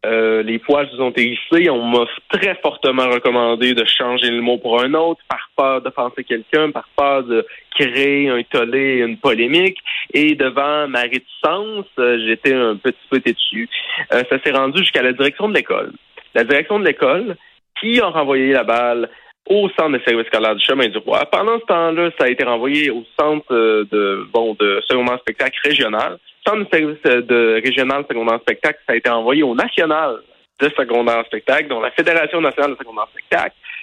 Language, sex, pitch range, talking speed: French, male, 120-185 Hz, 185 wpm